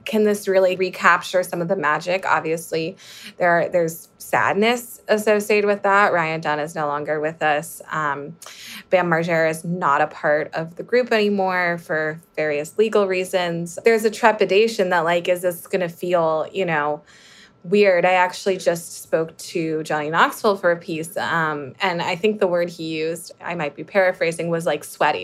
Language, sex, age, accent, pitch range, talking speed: English, female, 20-39, American, 160-195 Hz, 180 wpm